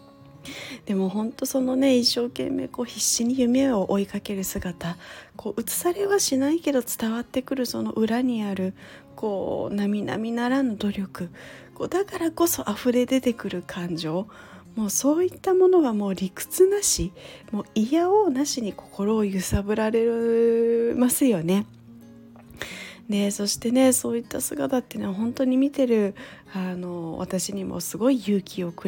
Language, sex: Japanese, female